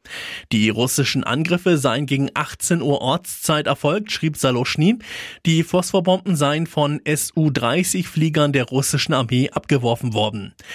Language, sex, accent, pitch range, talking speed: German, male, German, 125-165 Hz, 115 wpm